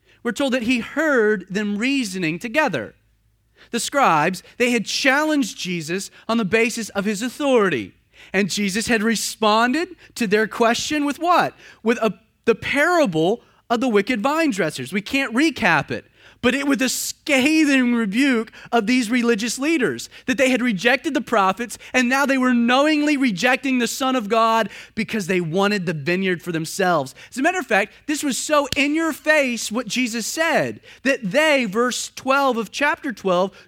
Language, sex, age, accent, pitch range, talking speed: English, male, 30-49, American, 215-290 Hz, 170 wpm